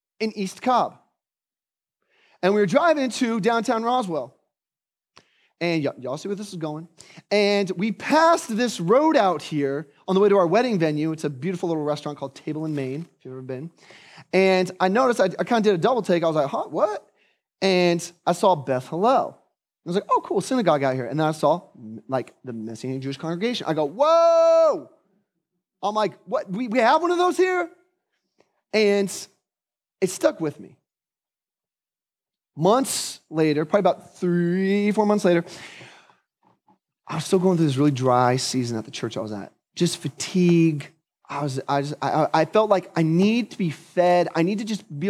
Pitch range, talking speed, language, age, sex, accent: 150-210 Hz, 190 wpm, English, 30-49, male, American